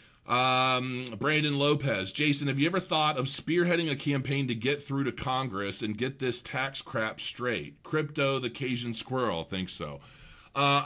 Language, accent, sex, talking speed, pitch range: English, American, male, 165 wpm, 125-170 Hz